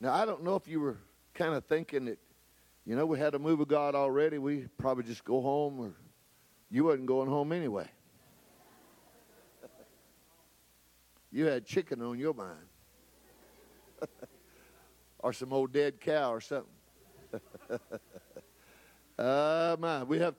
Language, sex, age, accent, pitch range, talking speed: English, male, 50-69, American, 140-195 Hz, 140 wpm